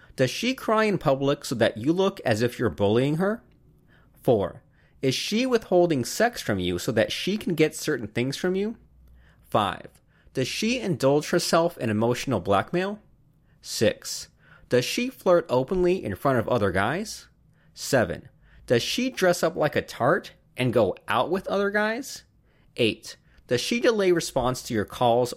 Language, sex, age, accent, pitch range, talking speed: English, male, 30-49, American, 115-180 Hz, 165 wpm